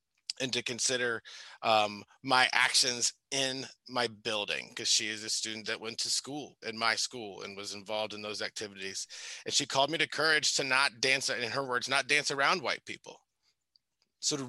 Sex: male